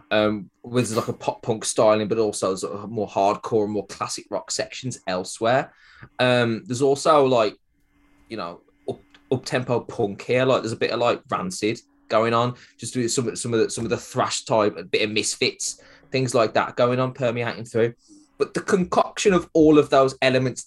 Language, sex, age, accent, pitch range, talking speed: English, male, 20-39, British, 115-145 Hz, 190 wpm